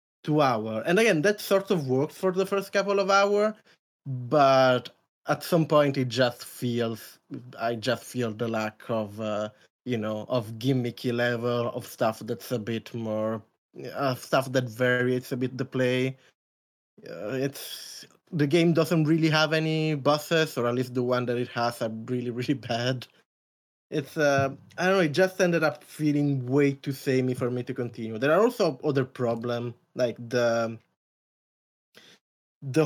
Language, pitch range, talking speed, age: English, 120-155 Hz, 170 wpm, 20-39